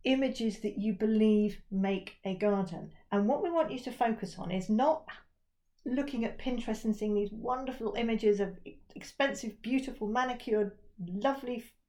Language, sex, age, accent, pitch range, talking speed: English, female, 40-59, British, 200-260 Hz, 150 wpm